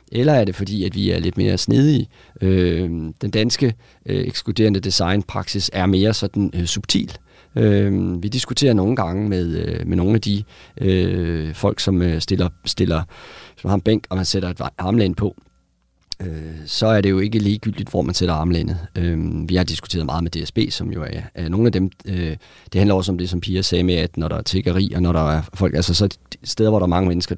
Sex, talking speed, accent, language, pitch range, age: male, 210 wpm, native, Danish, 90-110 Hz, 40-59